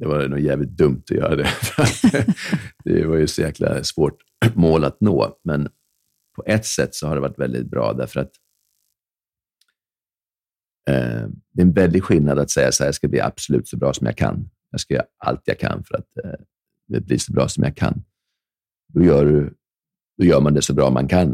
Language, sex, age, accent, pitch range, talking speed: Swedish, male, 40-59, native, 65-80 Hz, 200 wpm